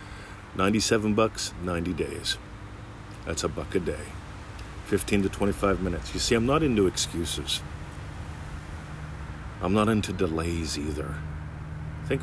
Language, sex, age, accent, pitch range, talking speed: English, male, 40-59, American, 75-100 Hz, 125 wpm